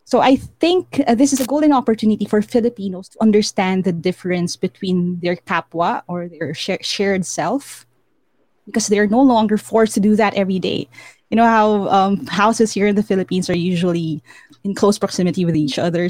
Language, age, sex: English, 20-39, female